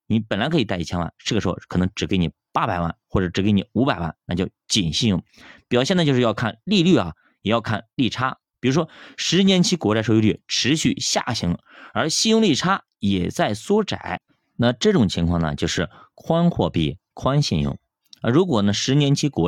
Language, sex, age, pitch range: Chinese, male, 30-49, 90-135 Hz